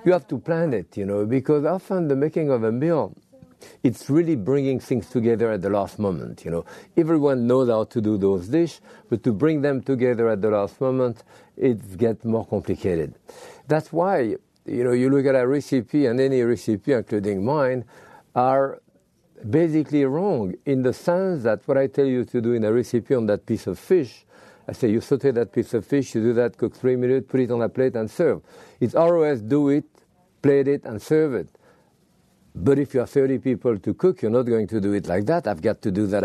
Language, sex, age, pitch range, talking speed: English, male, 50-69, 110-140 Hz, 215 wpm